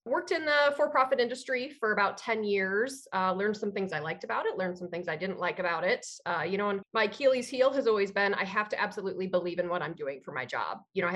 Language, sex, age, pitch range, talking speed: English, female, 30-49, 185-230 Hz, 270 wpm